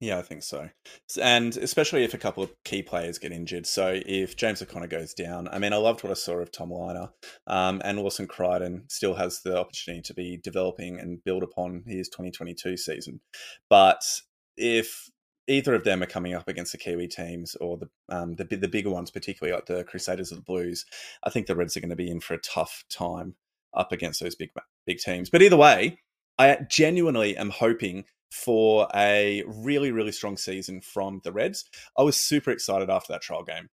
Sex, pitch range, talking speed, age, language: male, 90-115 Hz, 205 wpm, 20-39, English